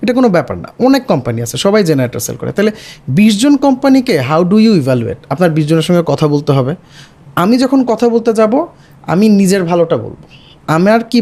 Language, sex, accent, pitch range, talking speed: Bengali, male, native, 145-220 Hz, 185 wpm